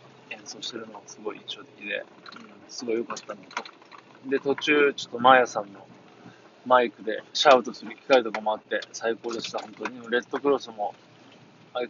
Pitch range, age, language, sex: 115-150 Hz, 20-39, Japanese, male